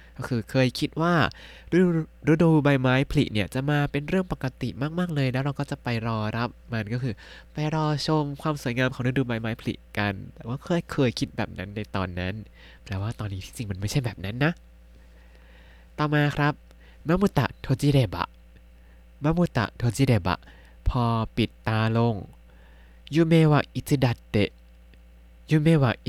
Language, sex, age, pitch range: Thai, male, 20-39, 95-140 Hz